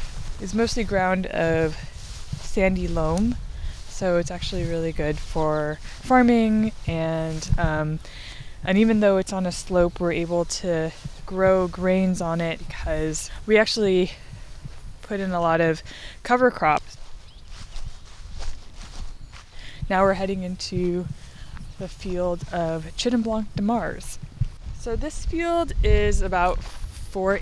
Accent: American